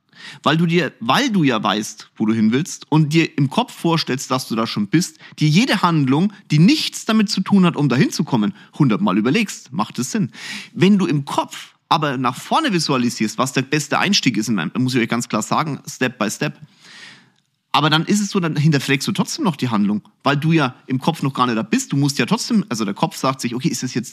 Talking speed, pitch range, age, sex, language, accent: 235 wpm, 130-180 Hz, 30-49, male, German, German